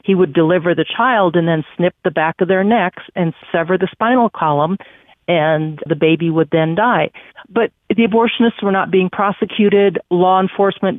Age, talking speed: 50-69, 180 wpm